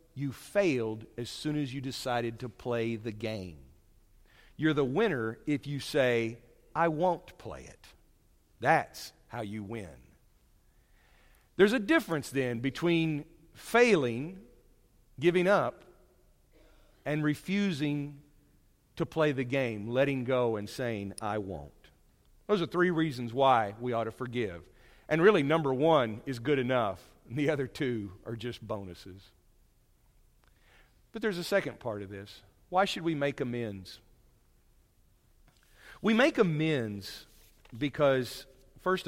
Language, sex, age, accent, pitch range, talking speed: English, male, 50-69, American, 115-165 Hz, 130 wpm